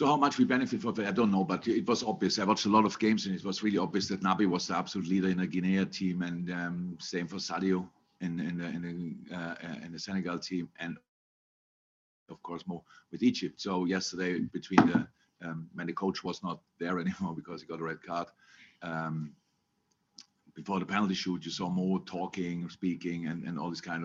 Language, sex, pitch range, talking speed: English, male, 85-95 Hz, 220 wpm